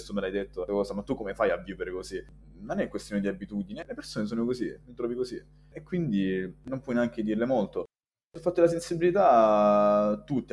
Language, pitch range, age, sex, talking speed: Italian, 100-120 Hz, 20-39, male, 200 wpm